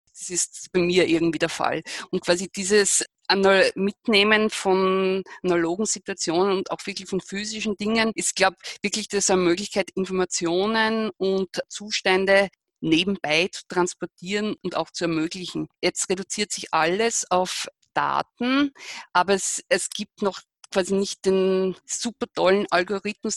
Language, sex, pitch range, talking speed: German, female, 180-200 Hz, 140 wpm